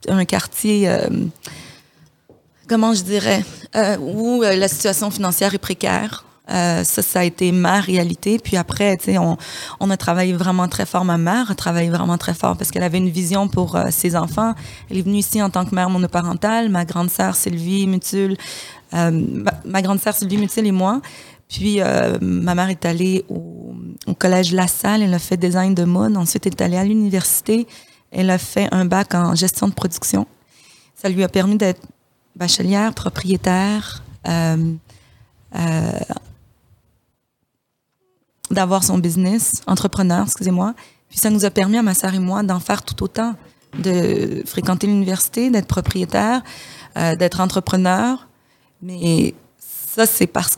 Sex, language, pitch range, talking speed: female, French, 175-205 Hz, 170 wpm